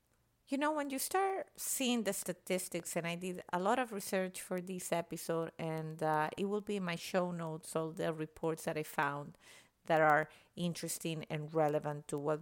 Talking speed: 195 wpm